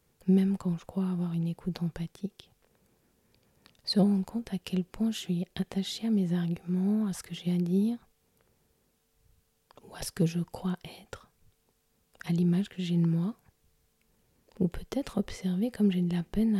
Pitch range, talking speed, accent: 170-195 Hz, 170 wpm, French